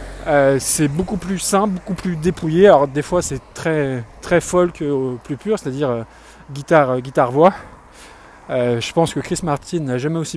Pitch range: 125-160 Hz